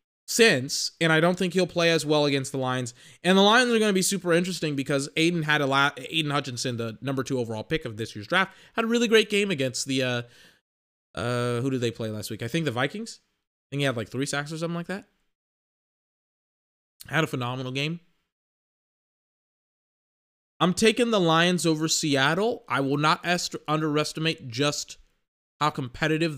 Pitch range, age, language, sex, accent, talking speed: 130-175 Hz, 20-39, English, male, American, 190 wpm